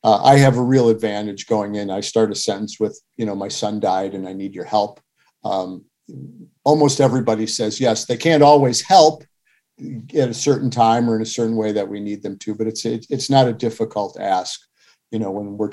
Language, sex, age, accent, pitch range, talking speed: English, male, 50-69, American, 105-130 Hz, 220 wpm